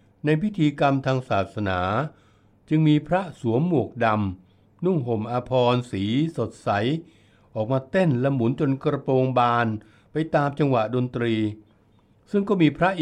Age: 60-79